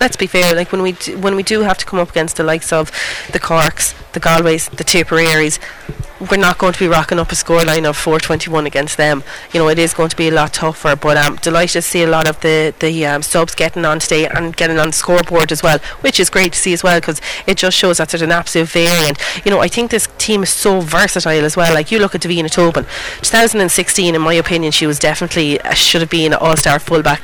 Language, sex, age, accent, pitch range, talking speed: English, female, 30-49, Irish, 160-180 Hz, 260 wpm